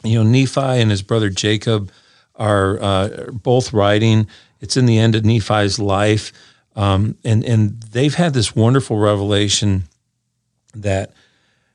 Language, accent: English, American